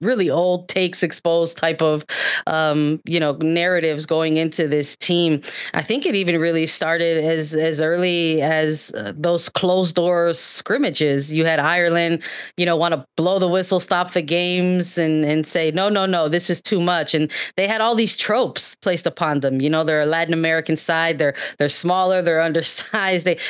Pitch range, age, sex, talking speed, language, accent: 155-180 Hz, 20-39, female, 190 wpm, English, American